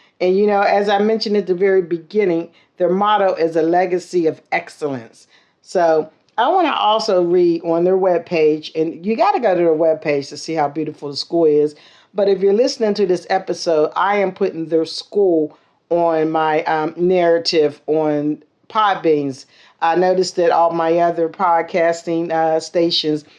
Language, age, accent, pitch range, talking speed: English, 50-69, American, 160-195 Hz, 180 wpm